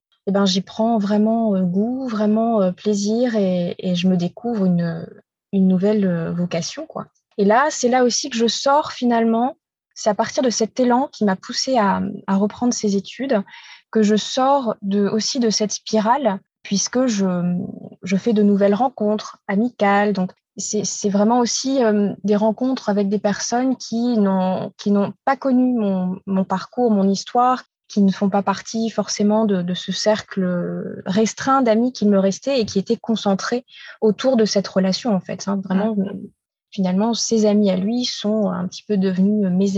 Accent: French